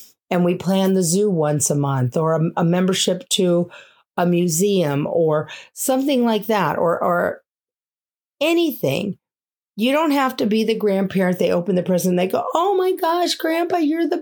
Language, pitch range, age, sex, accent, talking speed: English, 170-240 Hz, 50-69, female, American, 175 wpm